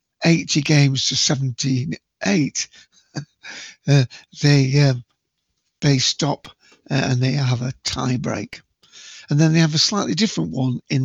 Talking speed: 130 wpm